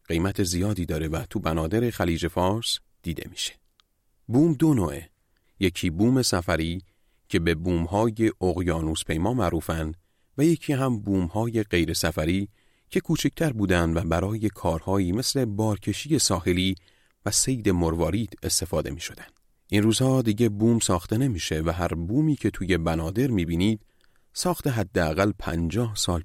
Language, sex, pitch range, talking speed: Persian, male, 85-115 Hz, 135 wpm